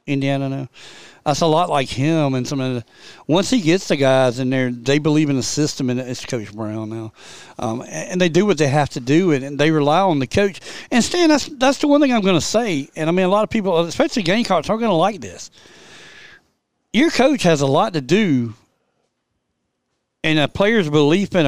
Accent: American